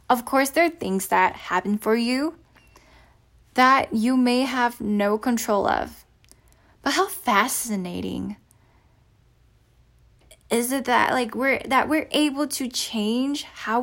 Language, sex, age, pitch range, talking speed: English, female, 10-29, 175-260 Hz, 130 wpm